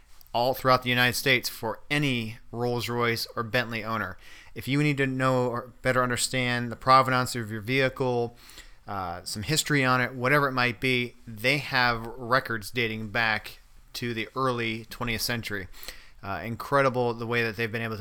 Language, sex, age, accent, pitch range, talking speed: English, male, 30-49, American, 115-130 Hz, 175 wpm